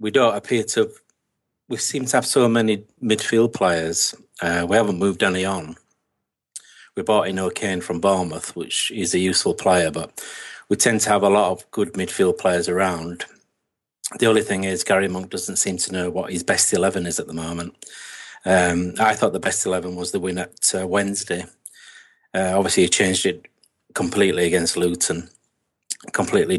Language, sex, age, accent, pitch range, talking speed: English, male, 40-59, British, 90-105 Hz, 180 wpm